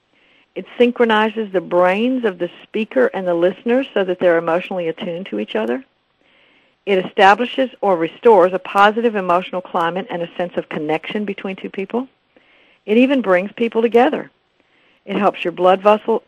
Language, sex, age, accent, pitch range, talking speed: English, female, 60-79, American, 180-225 Hz, 160 wpm